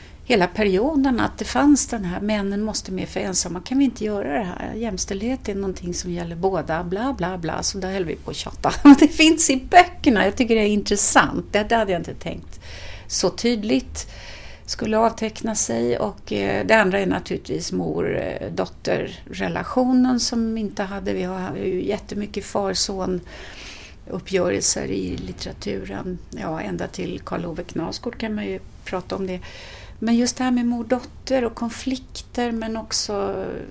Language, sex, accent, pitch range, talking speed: Finnish, female, Swedish, 140-225 Hz, 165 wpm